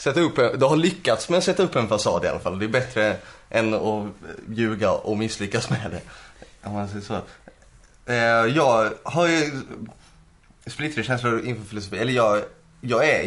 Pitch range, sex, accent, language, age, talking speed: 105-125 Hz, male, Swedish, English, 20-39, 175 wpm